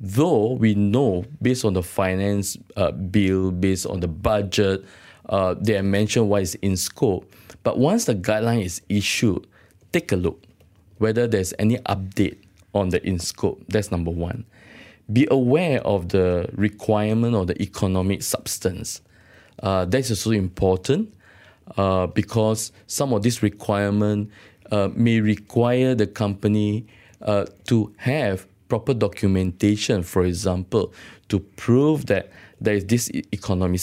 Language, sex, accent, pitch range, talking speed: English, male, Malaysian, 95-115 Hz, 140 wpm